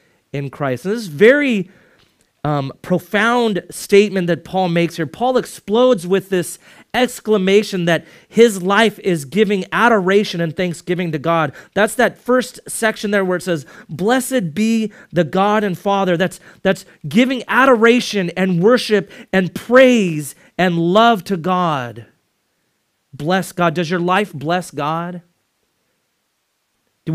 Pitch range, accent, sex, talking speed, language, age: 180-235 Hz, American, male, 140 wpm, English, 30-49